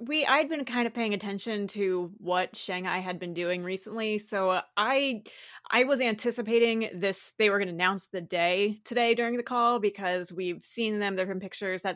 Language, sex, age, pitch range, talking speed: English, female, 20-39, 185-220 Hz, 205 wpm